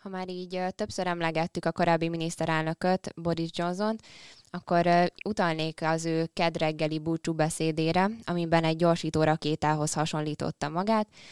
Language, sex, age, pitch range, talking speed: Hungarian, female, 20-39, 155-175 Hz, 120 wpm